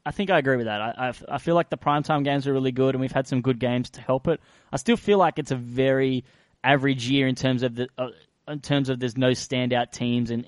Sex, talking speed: male, 270 wpm